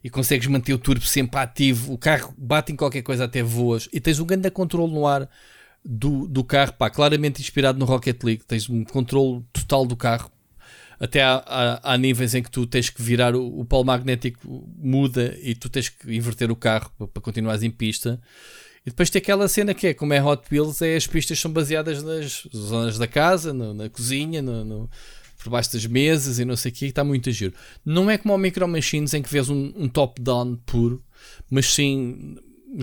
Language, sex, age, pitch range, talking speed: Portuguese, male, 20-39, 120-140 Hz, 215 wpm